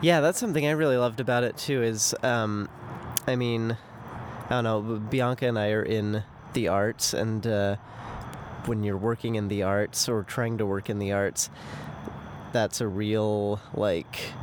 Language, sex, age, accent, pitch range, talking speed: English, male, 30-49, American, 100-115 Hz, 175 wpm